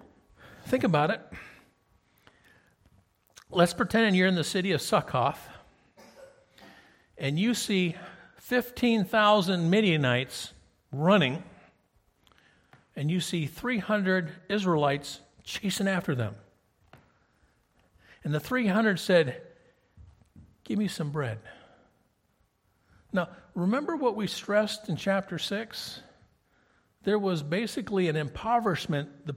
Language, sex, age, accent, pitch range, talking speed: English, male, 60-79, American, 140-220 Hz, 95 wpm